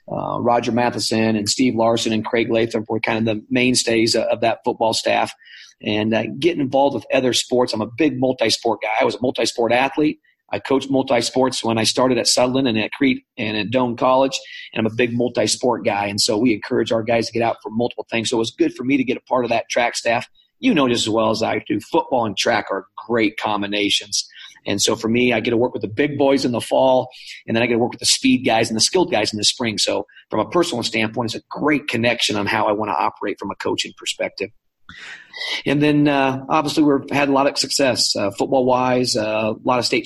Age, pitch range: 40-59, 115-130 Hz